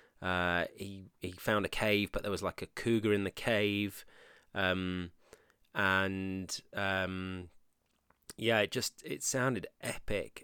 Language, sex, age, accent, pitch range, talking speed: English, male, 30-49, British, 95-110 Hz, 140 wpm